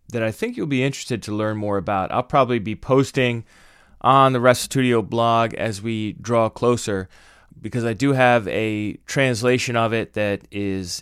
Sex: male